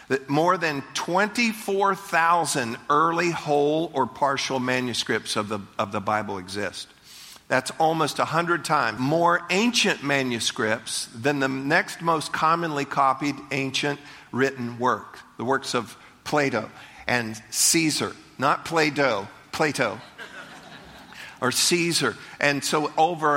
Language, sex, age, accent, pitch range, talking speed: English, male, 50-69, American, 125-160 Hz, 120 wpm